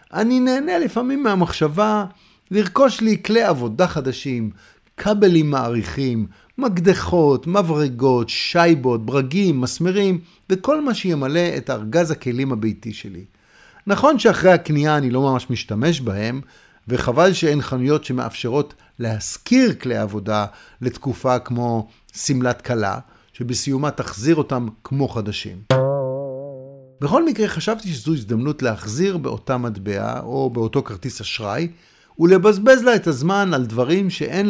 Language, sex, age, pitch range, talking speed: Hebrew, male, 50-69, 125-185 Hz, 115 wpm